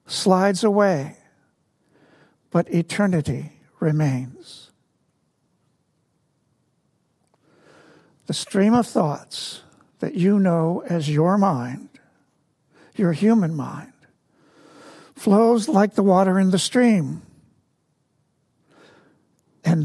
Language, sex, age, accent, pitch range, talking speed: English, male, 60-79, American, 165-205 Hz, 80 wpm